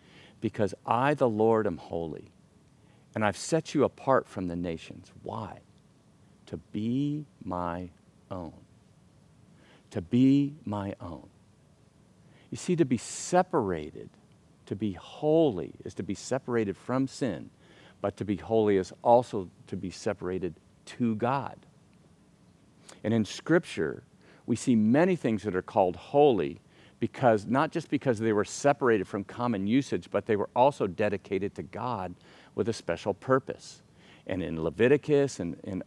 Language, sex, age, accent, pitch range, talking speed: English, male, 50-69, American, 100-135 Hz, 140 wpm